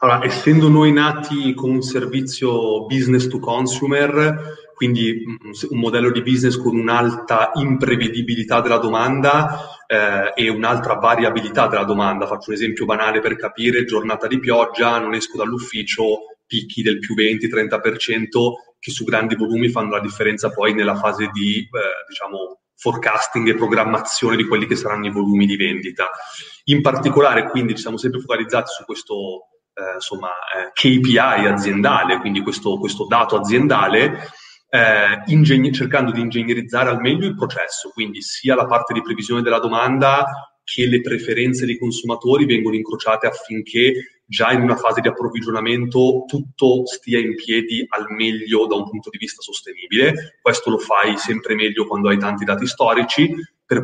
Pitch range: 110-130 Hz